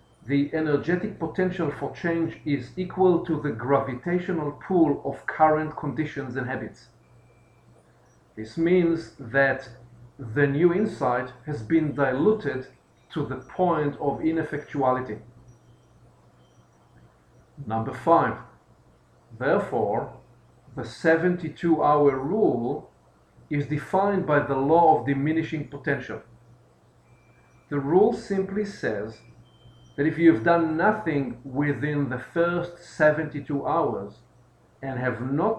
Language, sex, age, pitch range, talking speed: English, male, 50-69, 125-160 Hz, 105 wpm